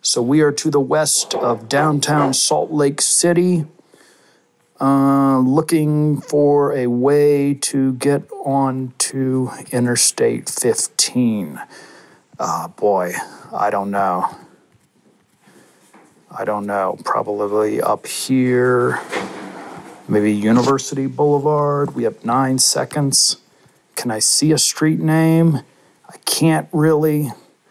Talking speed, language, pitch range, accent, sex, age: 105 wpm, English, 115-155 Hz, American, male, 40-59